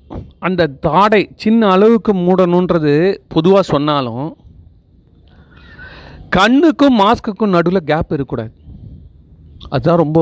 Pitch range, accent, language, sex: 120-185 Hz, native, Tamil, male